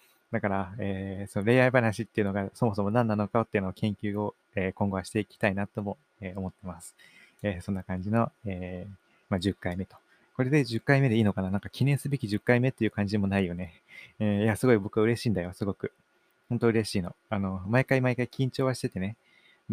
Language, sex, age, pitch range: Japanese, male, 20-39, 95-115 Hz